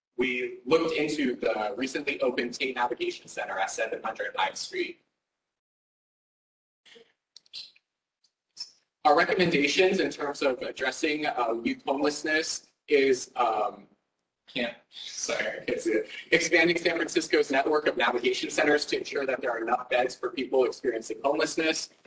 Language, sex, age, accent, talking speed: English, male, 30-49, American, 120 wpm